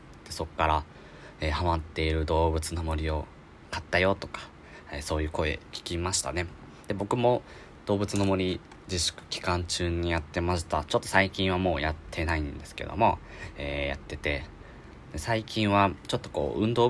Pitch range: 80-100 Hz